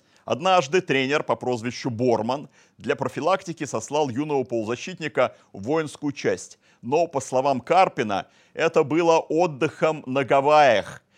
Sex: male